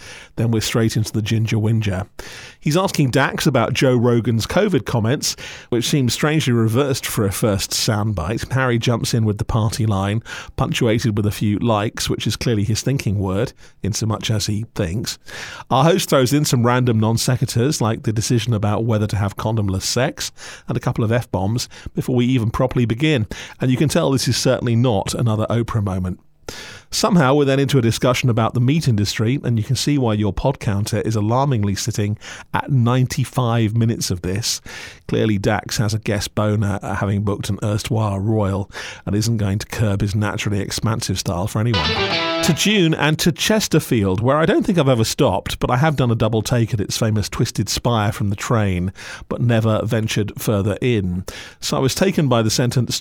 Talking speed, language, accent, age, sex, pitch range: 195 wpm, English, British, 40-59, male, 105-130 Hz